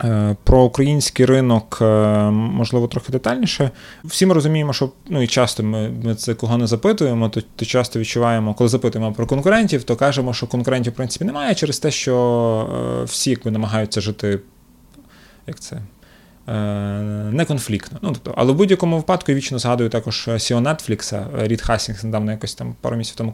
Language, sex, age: Ukrainian, male, 20-39